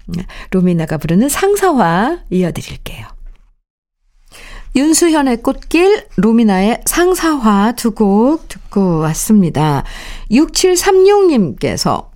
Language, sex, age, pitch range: Korean, female, 50-69, 180-270 Hz